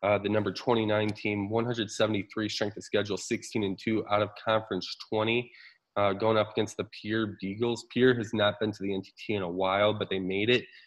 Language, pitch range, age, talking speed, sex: English, 95-115 Hz, 20-39, 205 wpm, male